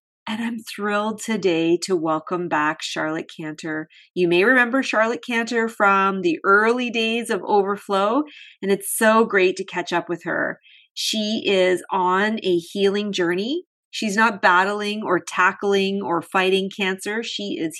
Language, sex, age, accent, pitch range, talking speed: English, female, 40-59, American, 170-215 Hz, 150 wpm